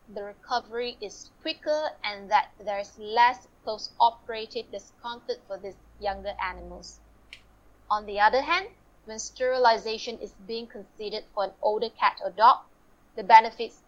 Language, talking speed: English, 140 wpm